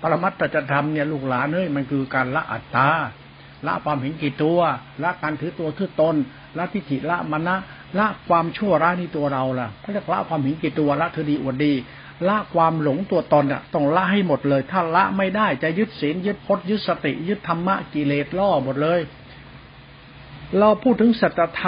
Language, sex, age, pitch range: Thai, male, 60-79, 145-190 Hz